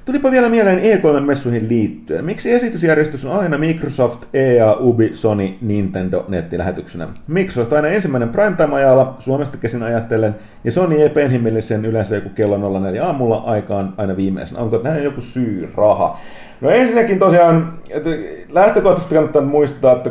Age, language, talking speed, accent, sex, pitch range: 30-49, Finnish, 140 wpm, native, male, 110-155 Hz